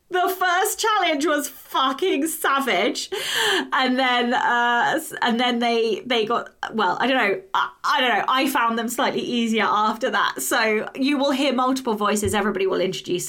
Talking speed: 170 wpm